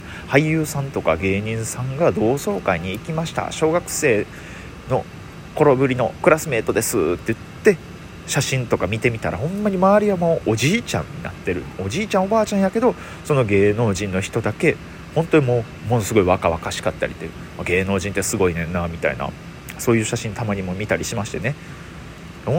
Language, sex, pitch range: Japanese, male, 90-150 Hz